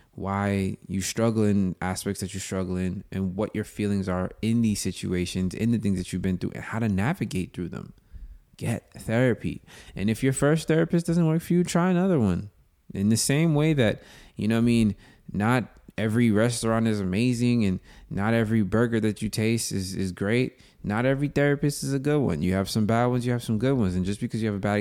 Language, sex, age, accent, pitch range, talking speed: English, male, 20-39, American, 95-120 Hz, 225 wpm